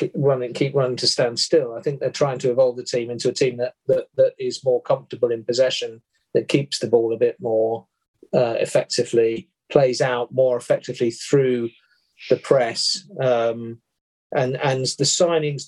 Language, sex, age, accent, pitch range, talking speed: English, male, 40-59, British, 120-165 Hz, 175 wpm